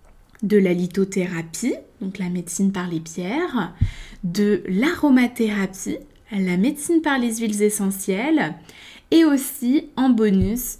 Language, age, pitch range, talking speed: French, 20-39, 190-255 Hz, 115 wpm